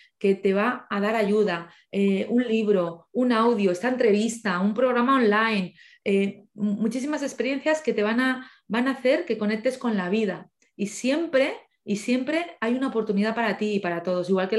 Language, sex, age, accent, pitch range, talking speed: Spanish, female, 30-49, Spanish, 195-245 Hz, 185 wpm